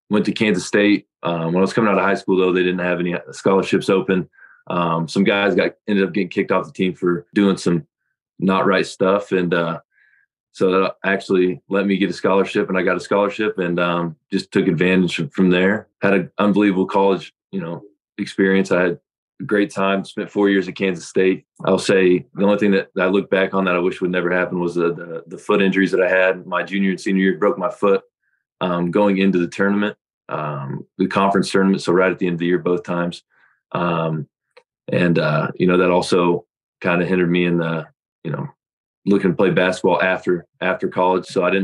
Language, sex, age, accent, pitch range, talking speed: English, male, 20-39, American, 90-95 Hz, 225 wpm